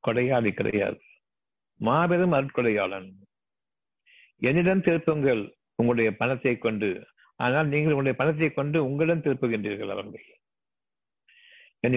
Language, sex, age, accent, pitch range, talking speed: Tamil, male, 50-69, native, 110-150 Hz, 95 wpm